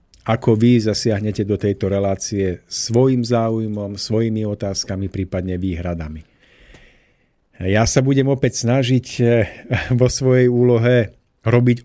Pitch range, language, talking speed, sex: 100-125 Hz, Slovak, 105 wpm, male